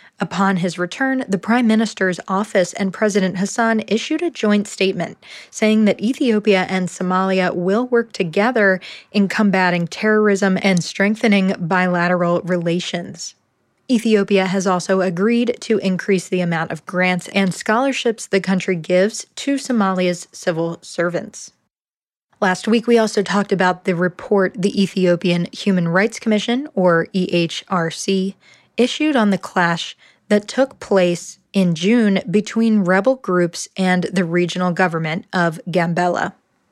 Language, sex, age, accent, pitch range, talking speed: English, female, 20-39, American, 180-215 Hz, 130 wpm